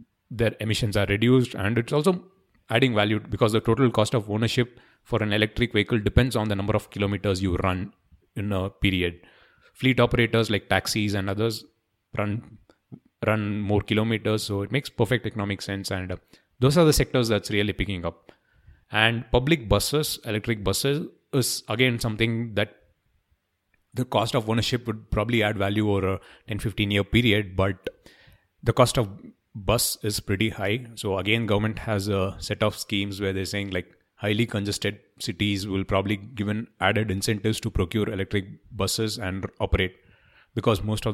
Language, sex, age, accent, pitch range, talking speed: English, male, 30-49, Indian, 100-115 Hz, 165 wpm